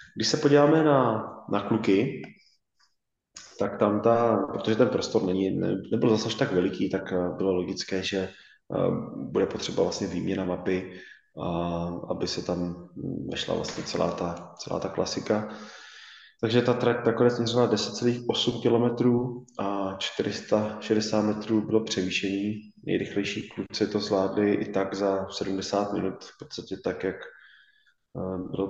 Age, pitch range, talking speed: 20-39, 95-115 Hz, 140 wpm